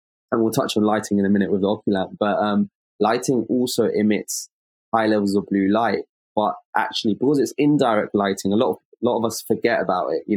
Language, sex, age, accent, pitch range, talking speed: English, male, 20-39, British, 100-115 Hz, 220 wpm